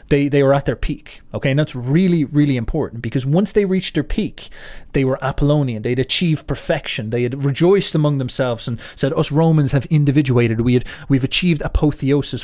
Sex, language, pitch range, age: male, English, 125-155 Hz, 30-49